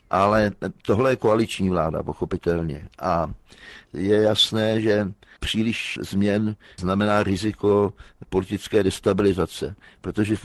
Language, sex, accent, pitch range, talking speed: Czech, male, native, 95-110 Hz, 105 wpm